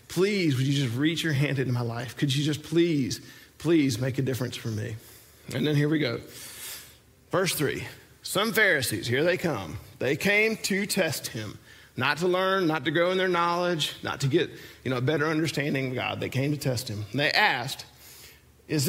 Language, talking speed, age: English, 195 wpm, 40-59